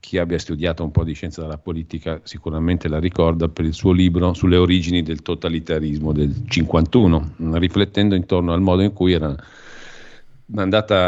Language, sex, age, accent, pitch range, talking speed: Italian, male, 50-69, native, 80-95 Hz, 160 wpm